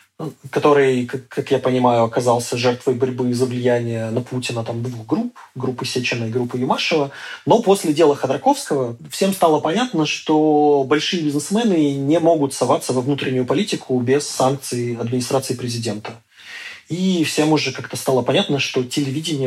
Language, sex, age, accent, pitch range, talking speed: Russian, male, 20-39, native, 125-160 Hz, 145 wpm